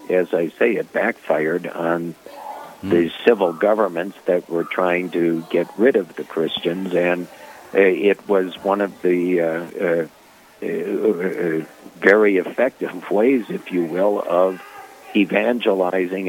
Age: 60-79